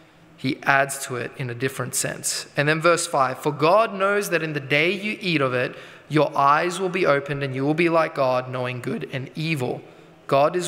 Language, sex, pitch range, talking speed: English, male, 135-165 Hz, 225 wpm